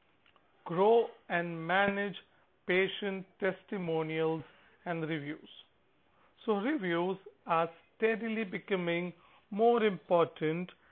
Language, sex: English, male